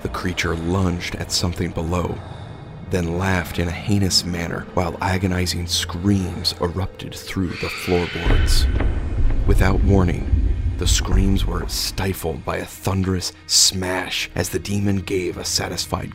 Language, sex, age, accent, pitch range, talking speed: English, male, 30-49, American, 85-95 Hz, 130 wpm